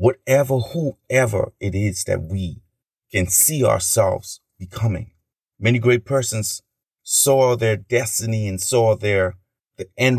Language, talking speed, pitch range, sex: English, 125 wpm, 100-120 Hz, male